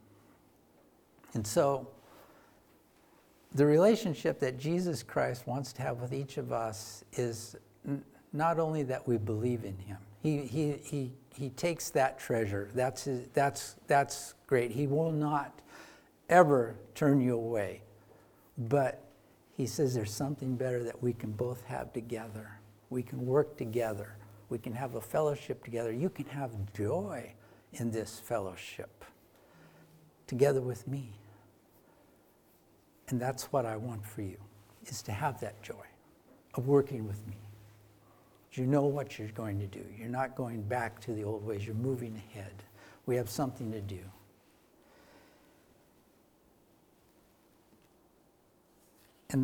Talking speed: 135 wpm